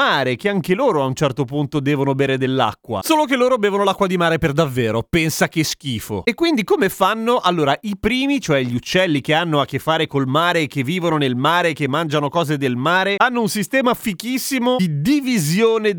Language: Italian